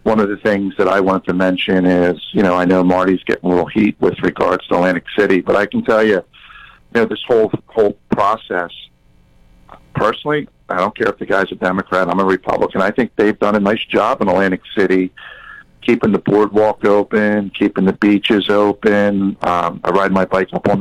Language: English